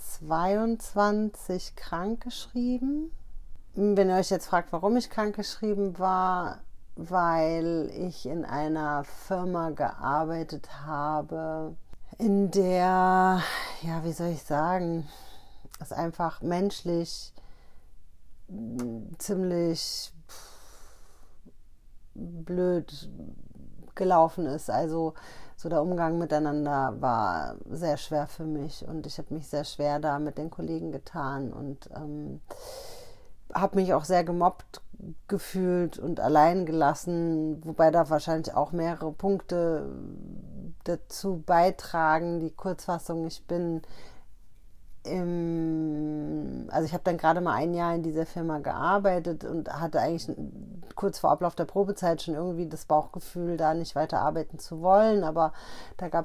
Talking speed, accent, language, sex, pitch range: 115 wpm, German, German, female, 150-180 Hz